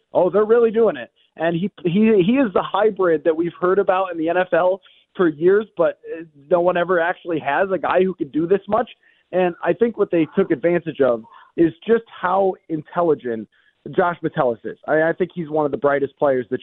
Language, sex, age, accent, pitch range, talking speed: English, male, 30-49, American, 150-185 Hz, 215 wpm